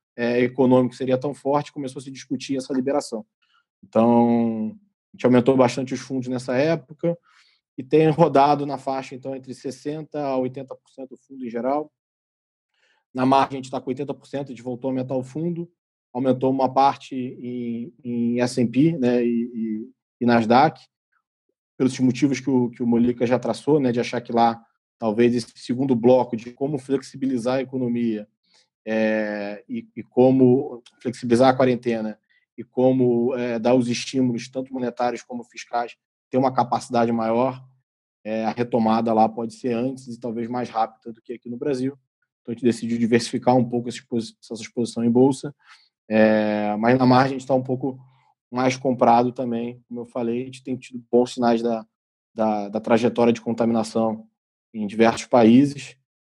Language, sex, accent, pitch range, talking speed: Portuguese, male, Brazilian, 115-130 Hz, 170 wpm